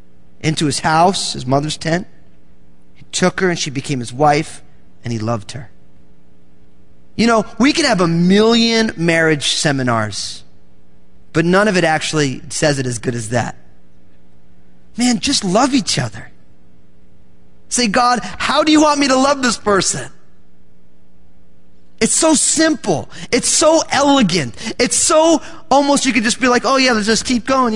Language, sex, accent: English, male, American